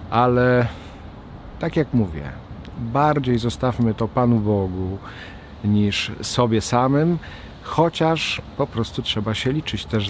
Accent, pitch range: native, 100-130 Hz